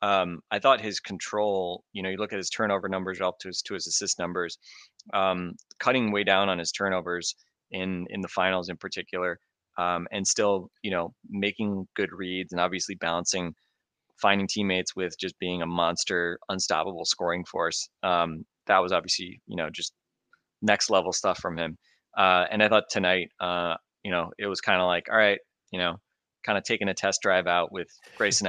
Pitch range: 90-100 Hz